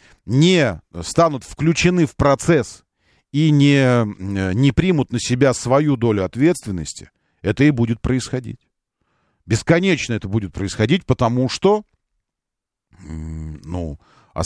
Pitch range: 105-150 Hz